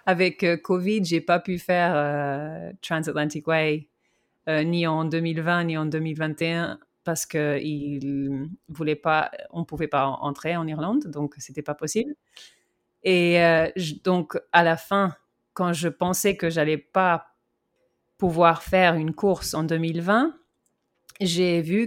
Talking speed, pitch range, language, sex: 135 wpm, 155-185 Hz, French, female